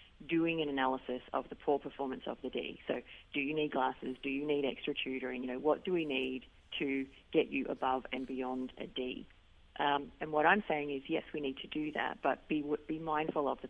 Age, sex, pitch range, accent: 40-59, female, 130-160 Hz, Australian